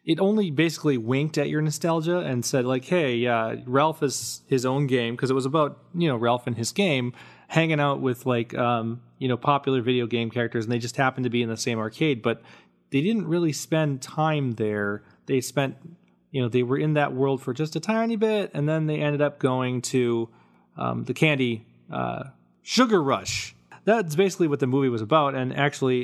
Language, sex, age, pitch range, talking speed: English, male, 30-49, 115-145 Hz, 210 wpm